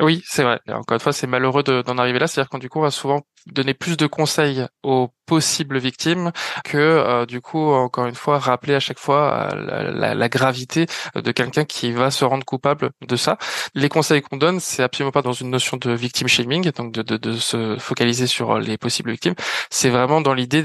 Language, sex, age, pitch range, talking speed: French, male, 20-39, 125-150 Hz, 220 wpm